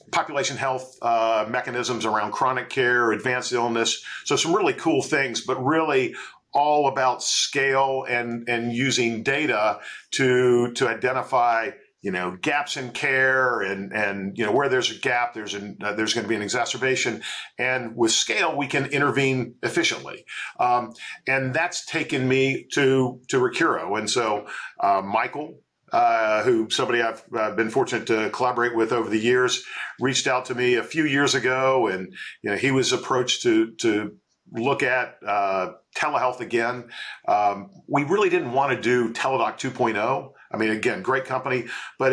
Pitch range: 115-135 Hz